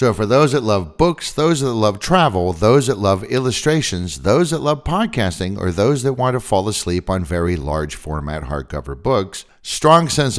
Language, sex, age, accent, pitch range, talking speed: English, male, 50-69, American, 85-125 Hz, 190 wpm